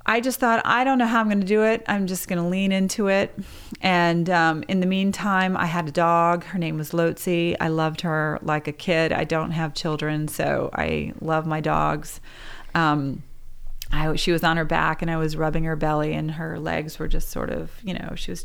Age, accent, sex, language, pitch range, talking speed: 30-49, American, female, English, 155-180 Hz, 230 wpm